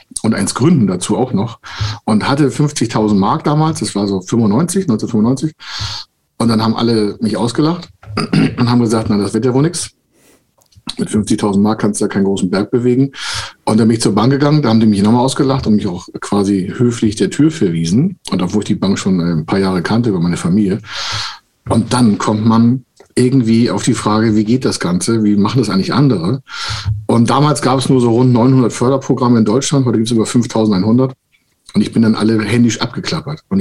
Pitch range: 105-125 Hz